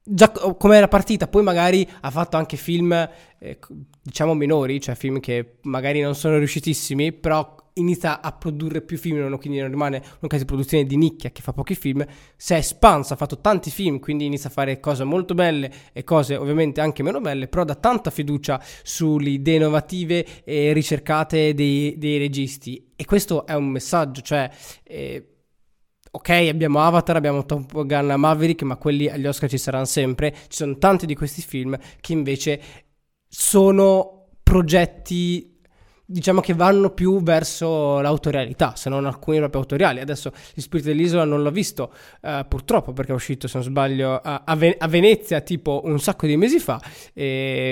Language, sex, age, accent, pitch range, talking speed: Italian, male, 20-39, native, 140-170 Hz, 175 wpm